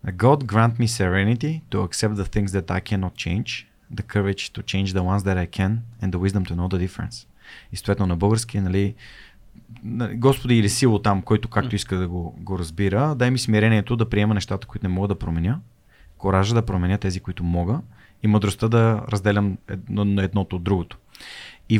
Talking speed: 195 wpm